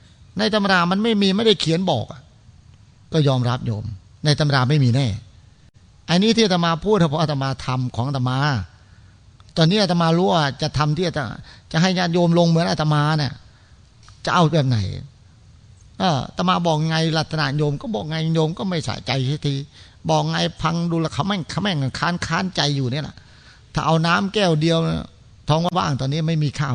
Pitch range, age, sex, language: 115-165 Hz, 30-49, male, Thai